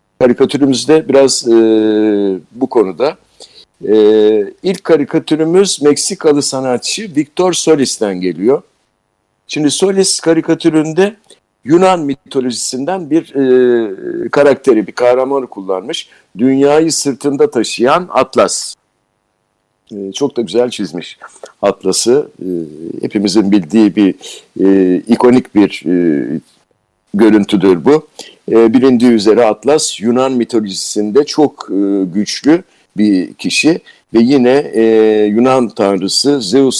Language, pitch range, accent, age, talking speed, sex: Turkish, 105-160 Hz, native, 60-79, 95 wpm, male